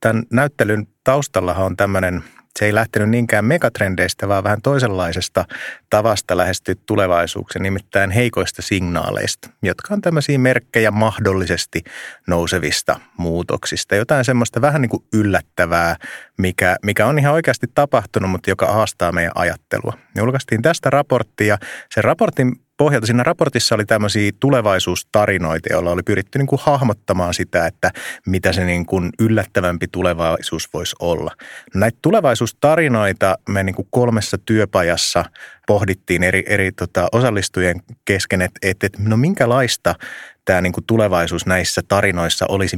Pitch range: 90-115 Hz